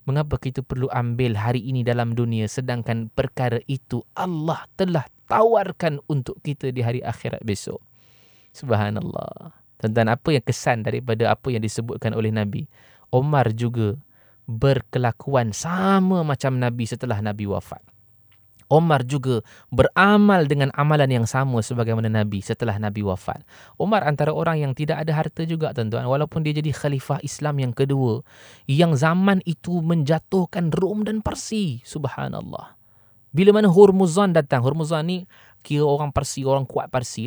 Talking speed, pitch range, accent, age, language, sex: 140 wpm, 120-185 Hz, Indonesian, 20-39, English, male